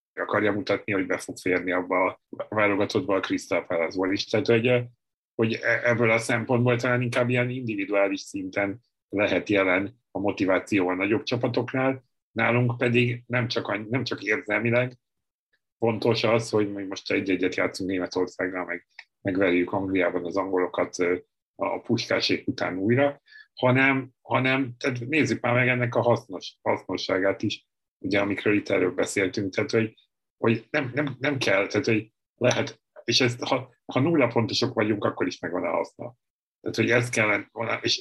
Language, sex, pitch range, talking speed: Hungarian, male, 95-125 Hz, 150 wpm